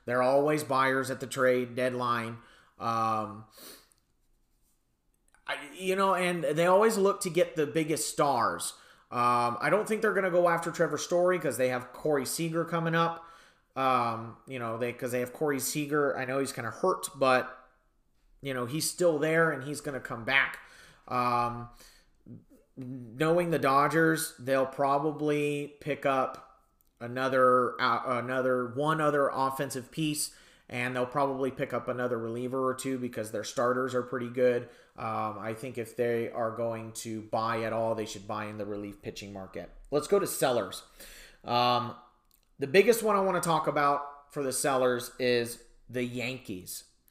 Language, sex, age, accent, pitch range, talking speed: English, male, 30-49, American, 120-150 Hz, 170 wpm